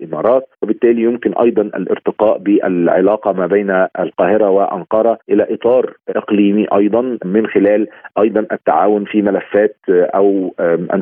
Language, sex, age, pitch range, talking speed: Arabic, male, 40-59, 95-115 Hz, 120 wpm